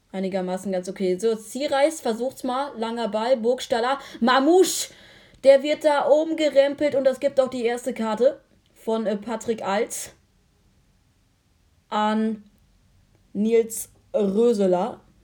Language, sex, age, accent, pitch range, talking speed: German, female, 20-39, German, 195-230 Hz, 115 wpm